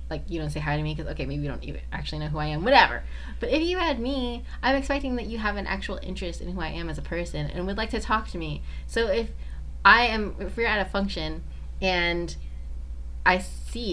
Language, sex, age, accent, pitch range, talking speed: English, female, 20-39, American, 150-210 Hz, 250 wpm